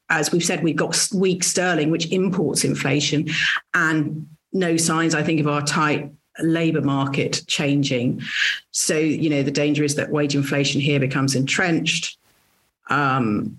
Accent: British